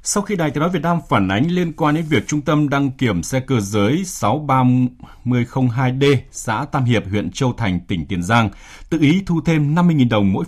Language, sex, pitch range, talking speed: Vietnamese, male, 95-140 Hz, 210 wpm